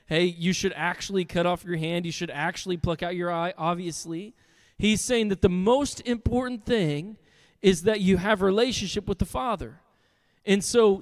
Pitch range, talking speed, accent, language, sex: 180-230 Hz, 180 wpm, American, English, male